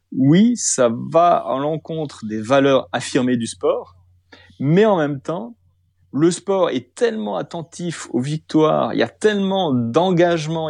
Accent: French